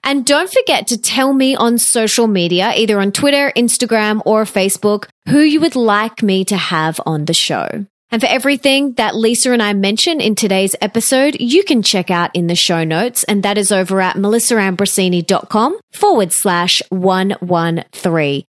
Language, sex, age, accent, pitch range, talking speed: English, female, 30-49, Australian, 190-270 Hz, 170 wpm